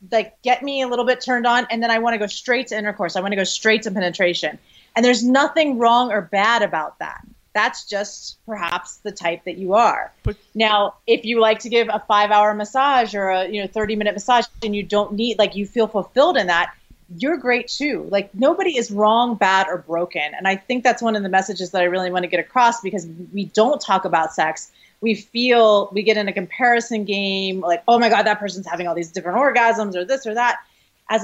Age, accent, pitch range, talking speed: 30-49, American, 185-235 Hz, 235 wpm